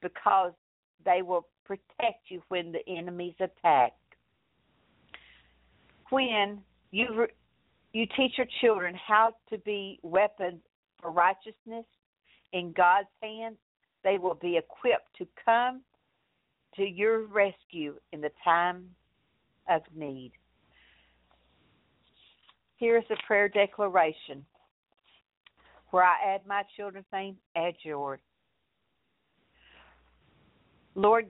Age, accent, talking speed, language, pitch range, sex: 60-79, American, 100 wpm, English, 180-225 Hz, female